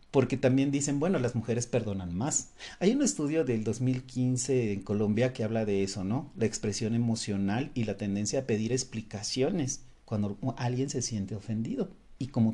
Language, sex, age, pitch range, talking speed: Spanish, male, 40-59, 110-140 Hz, 170 wpm